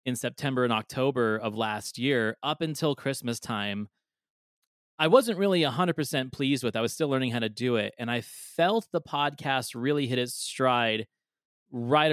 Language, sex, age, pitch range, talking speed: English, male, 30-49, 115-145 Hz, 175 wpm